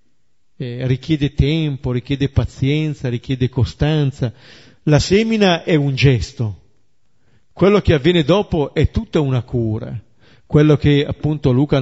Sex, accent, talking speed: male, native, 115 wpm